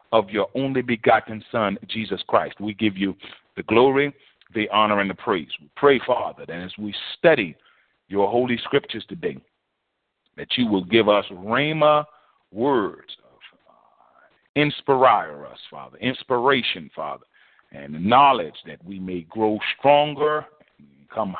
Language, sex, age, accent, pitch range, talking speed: English, male, 40-59, American, 85-120 Hz, 130 wpm